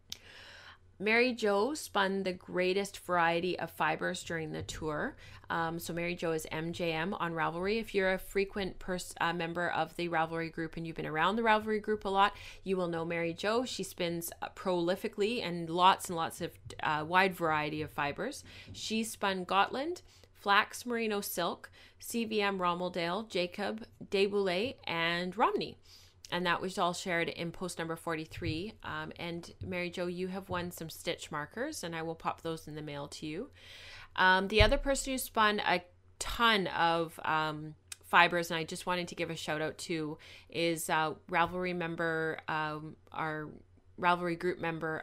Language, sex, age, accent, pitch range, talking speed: English, female, 30-49, American, 160-190 Hz, 170 wpm